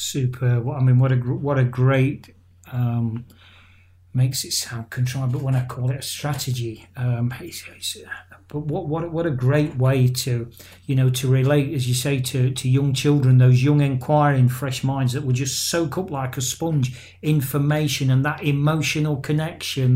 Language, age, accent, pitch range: English, 40-59, British, 125-150 Hz